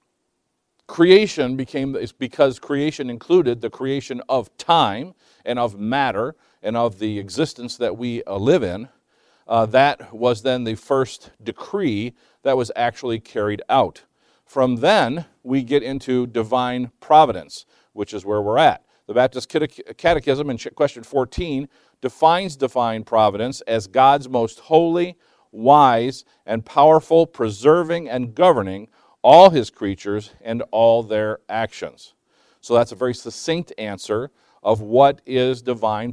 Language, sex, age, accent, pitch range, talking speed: English, male, 50-69, American, 115-150 Hz, 135 wpm